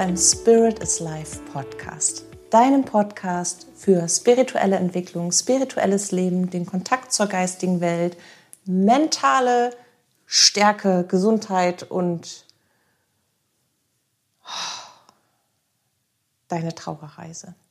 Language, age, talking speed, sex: German, 40-59, 75 wpm, female